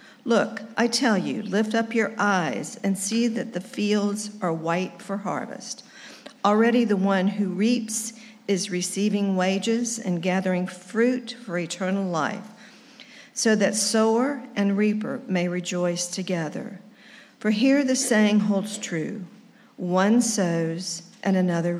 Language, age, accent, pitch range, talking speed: English, 50-69, American, 190-230 Hz, 135 wpm